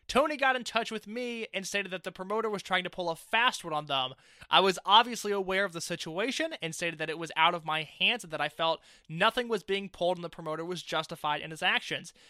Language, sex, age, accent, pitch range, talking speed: English, male, 20-39, American, 175-235 Hz, 255 wpm